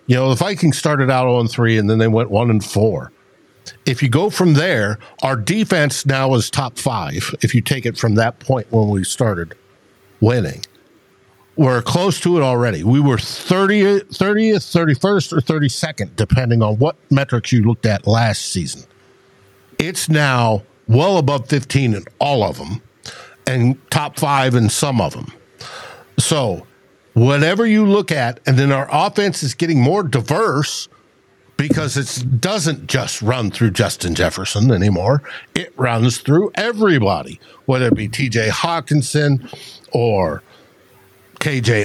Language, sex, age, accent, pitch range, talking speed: English, male, 60-79, American, 115-155 Hz, 150 wpm